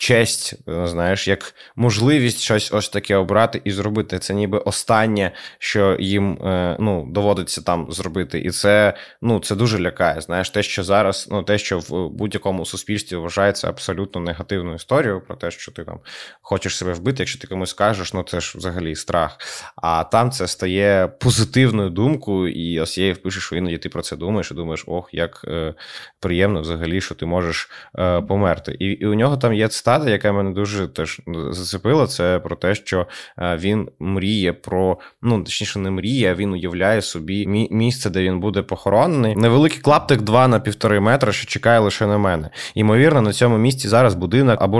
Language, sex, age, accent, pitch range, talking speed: Ukrainian, male, 20-39, native, 90-110 Hz, 180 wpm